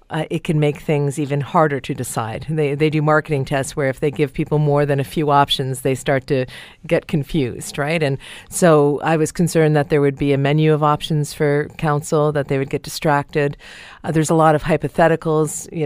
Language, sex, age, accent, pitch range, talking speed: English, female, 40-59, American, 140-155 Hz, 215 wpm